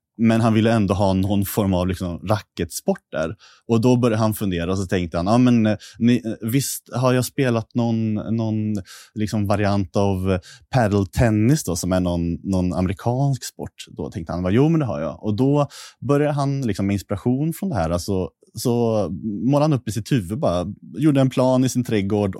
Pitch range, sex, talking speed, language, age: 100-120 Hz, male, 175 wpm, Swedish, 30-49